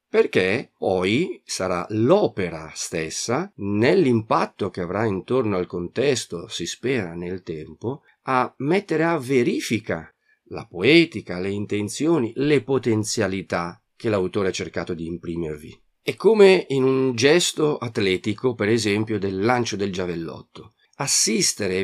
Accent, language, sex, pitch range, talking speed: native, Italian, male, 95-140 Hz, 125 wpm